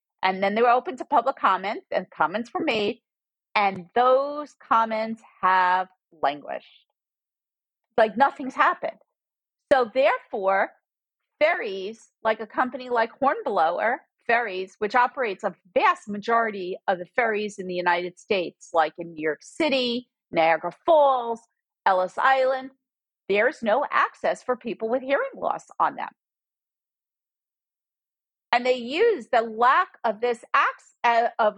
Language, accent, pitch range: English, American, 210-275 Hz